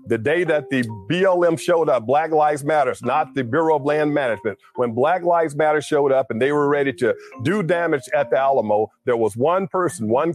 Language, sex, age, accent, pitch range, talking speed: English, male, 50-69, American, 125-160 Hz, 215 wpm